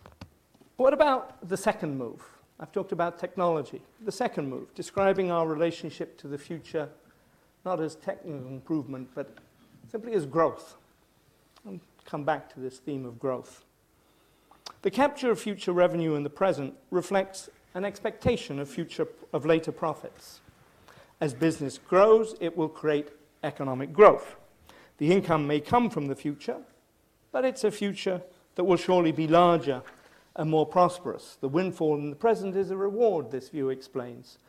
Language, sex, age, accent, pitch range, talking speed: English, male, 50-69, British, 140-185 Hz, 155 wpm